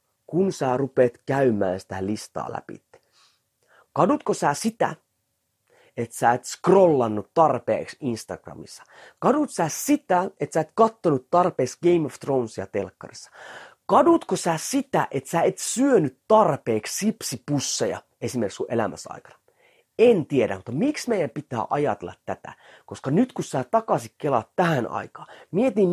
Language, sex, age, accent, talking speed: Finnish, male, 30-49, native, 135 wpm